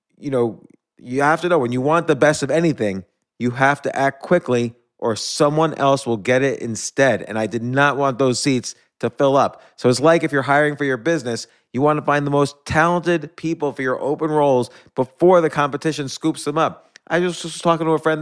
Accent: American